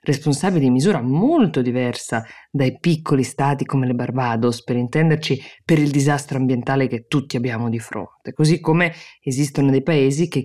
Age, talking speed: 20-39, 160 wpm